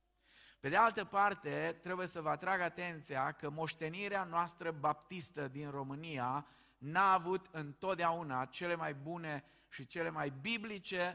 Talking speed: 135 wpm